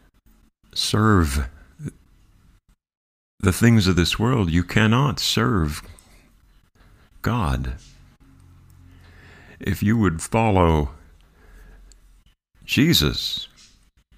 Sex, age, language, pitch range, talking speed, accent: male, 50-69, English, 80-105 Hz, 65 wpm, American